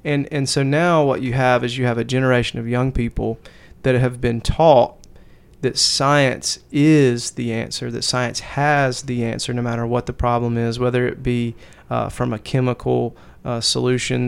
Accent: American